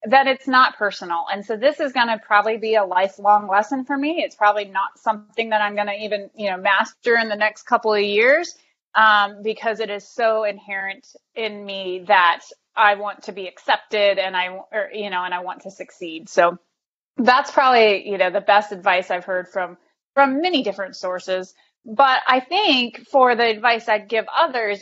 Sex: female